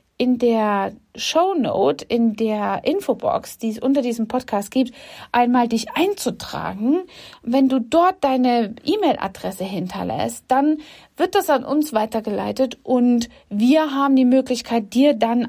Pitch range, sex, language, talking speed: 230-290 Hz, female, German, 130 wpm